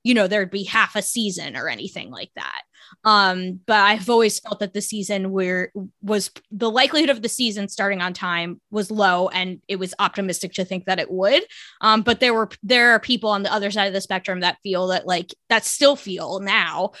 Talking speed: 220 wpm